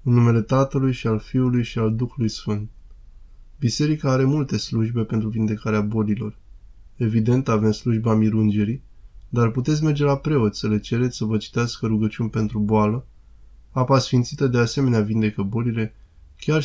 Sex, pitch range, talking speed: male, 105-125 Hz, 150 wpm